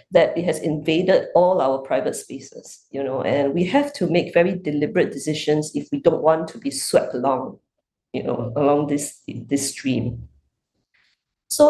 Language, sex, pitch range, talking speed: English, female, 145-210 Hz, 170 wpm